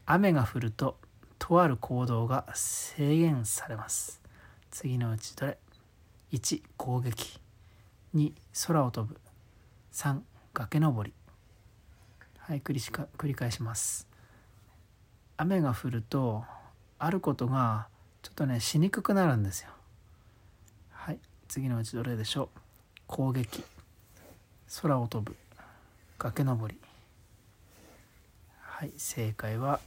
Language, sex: Japanese, male